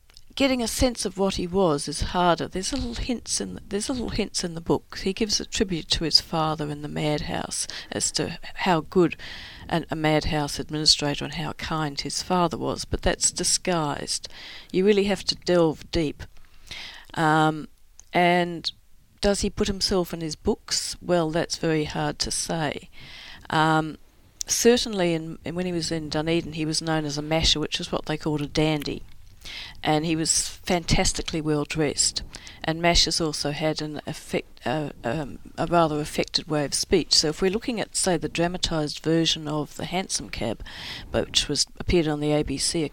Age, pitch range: 50-69, 150-180 Hz